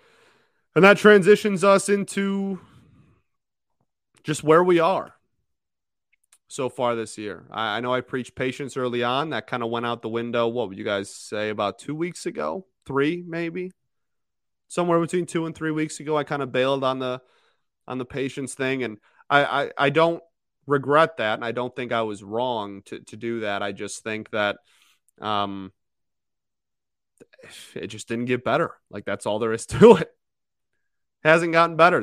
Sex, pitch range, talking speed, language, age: male, 105-155 Hz, 175 wpm, English, 20-39